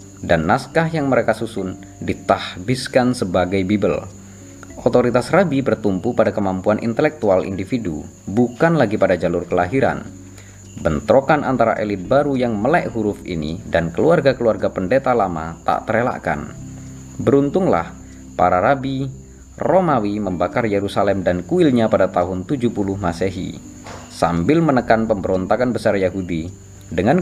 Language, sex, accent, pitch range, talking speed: Indonesian, male, native, 90-125 Hz, 115 wpm